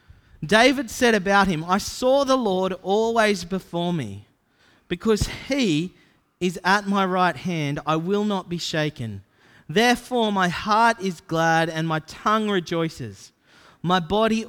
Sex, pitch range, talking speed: male, 155-210 Hz, 140 wpm